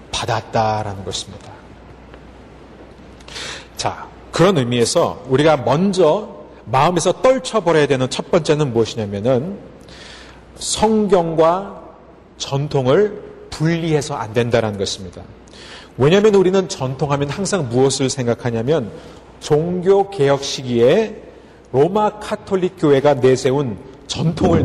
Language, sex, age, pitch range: Korean, male, 40-59, 125-185 Hz